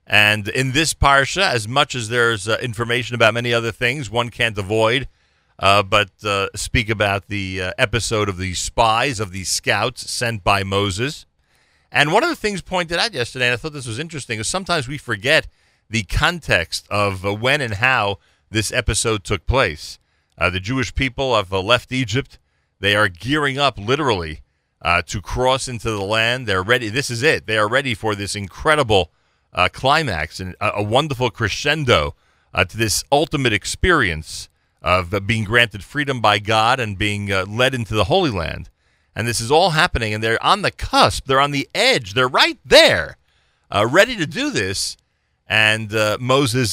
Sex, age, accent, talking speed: male, 40-59, American, 185 wpm